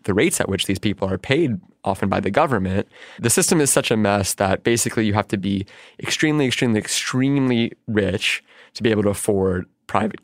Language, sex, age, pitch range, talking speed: English, male, 20-39, 100-115 Hz, 200 wpm